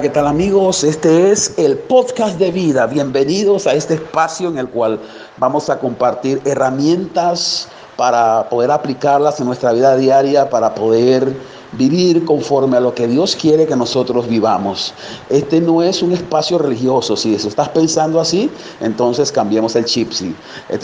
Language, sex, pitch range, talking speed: Spanish, male, 125-180 Hz, 160 wpm